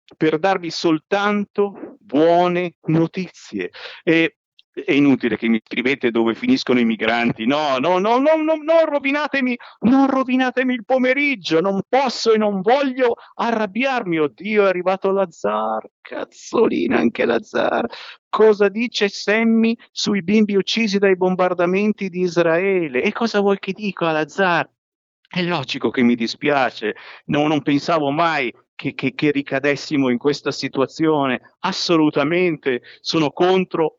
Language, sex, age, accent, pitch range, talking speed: Italian, male, 50-69, native, 150-215 Hz, 130 wpm